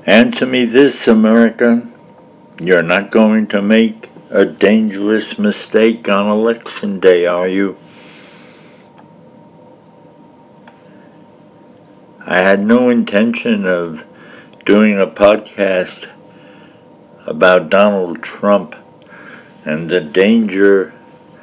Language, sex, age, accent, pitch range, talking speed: English, male, 60-79, American, 95-115 Hz, 85 wpm